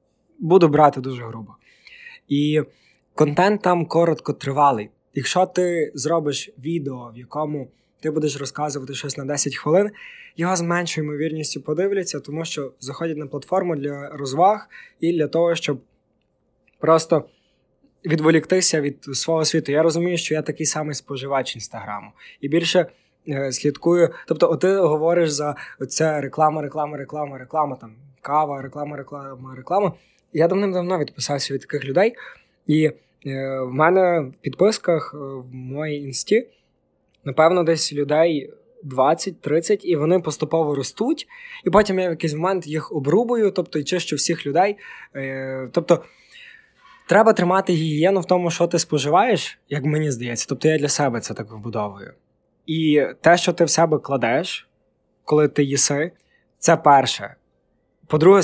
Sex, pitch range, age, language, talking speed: male, 140-170 Hz, 20-39, Ukrainian, 145 wpm